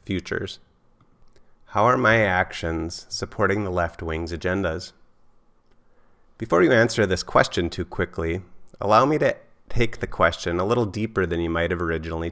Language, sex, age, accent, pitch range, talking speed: English, male, 30-49, American, 85-105 Hz, 150 wpm